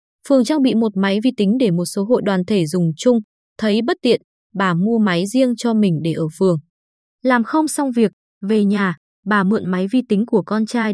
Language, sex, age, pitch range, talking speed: Vietnamese, female, 20-39, 185-245 Hz, 225 wpm